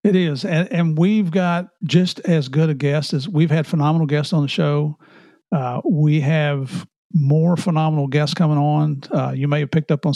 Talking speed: 200 wpm